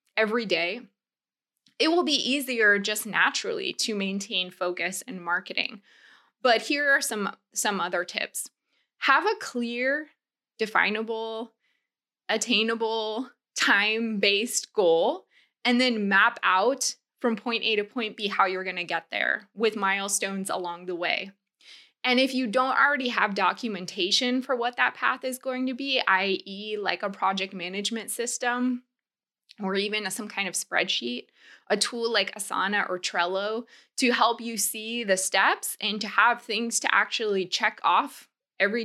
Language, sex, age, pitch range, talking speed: English, female, 20-39, 195-250 Hz, 145 wpm